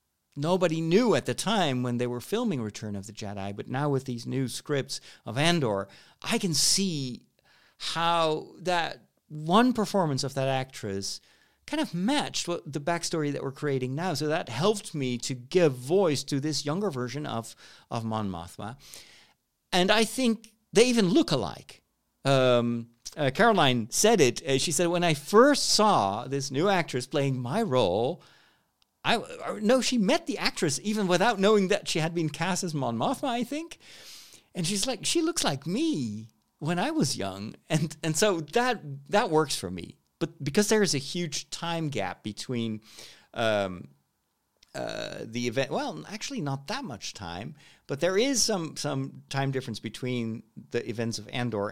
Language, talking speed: English, 175 wpm